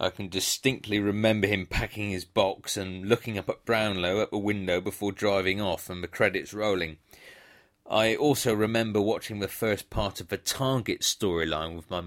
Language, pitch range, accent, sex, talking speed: English, 90-110 Hz, British, male, 180 wpm